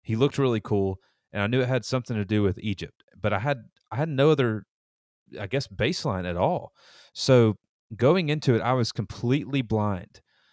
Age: 30-49